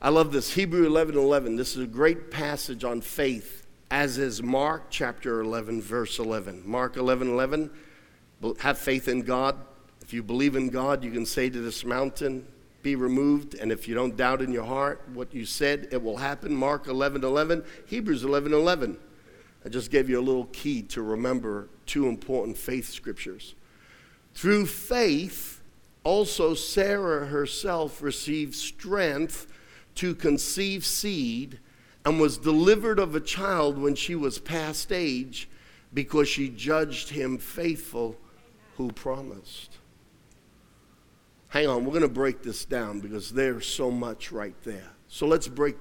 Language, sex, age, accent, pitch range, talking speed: English, male, 50-69, American, 125-155 Hz, 150 wpm